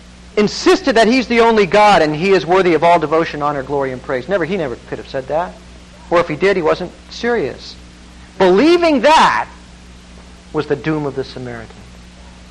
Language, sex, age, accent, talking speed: English, male, 50-69, American, 185 wpm